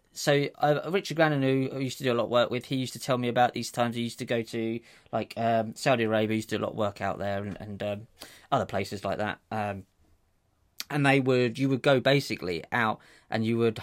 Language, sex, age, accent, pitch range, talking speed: English, male, 20-39, British, 100-130 Hz, 260 wpm